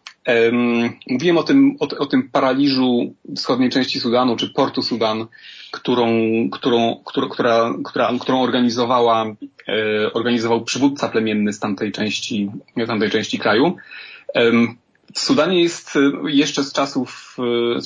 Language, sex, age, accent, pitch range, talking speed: Polish, male, 30-49, native, 110-140 Hz, 120 wpm